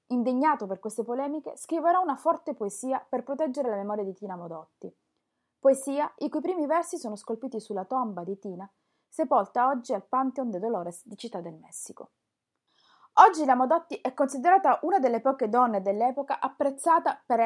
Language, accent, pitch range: Italian, native, 205-280 Hz